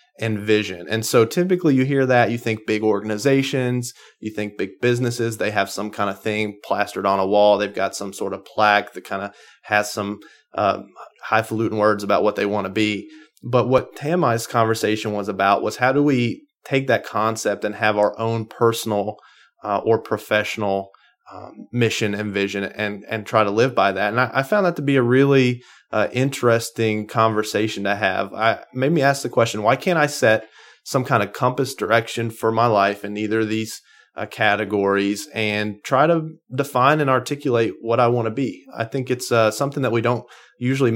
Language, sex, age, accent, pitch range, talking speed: English, male, 30-49, American, 105-130 Hz, 200 wpm